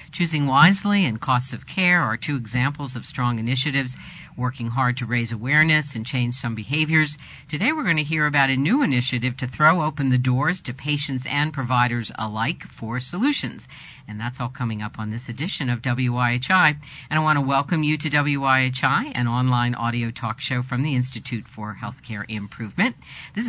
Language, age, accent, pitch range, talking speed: English, 50-69, American, 120-155 Hz, 185 wpm